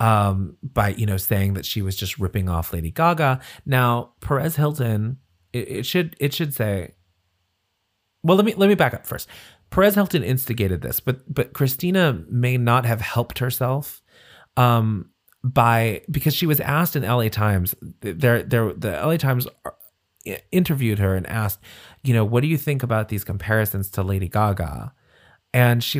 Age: 30-49